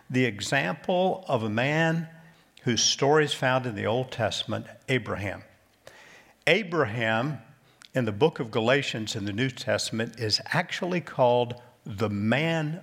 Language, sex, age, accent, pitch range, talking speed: English, male, 50-69, American, 115-150 Hz, 135 wpm